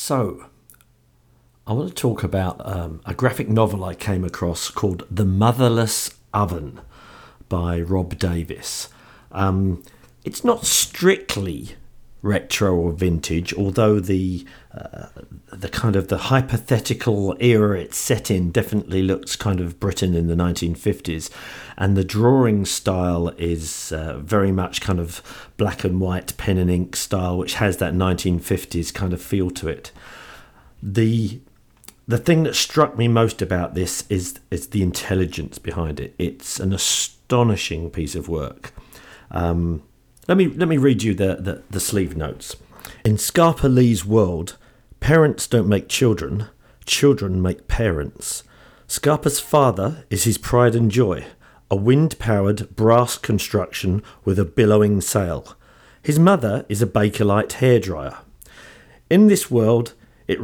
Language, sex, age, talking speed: English, male, 50-69, 140 wpm